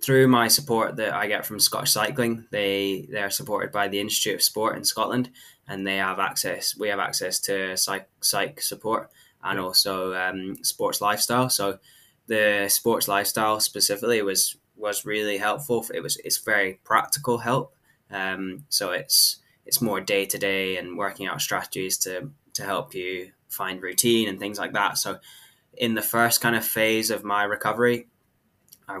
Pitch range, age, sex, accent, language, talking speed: 95-110 Hz, 10-29, male, British, English, 175 wpm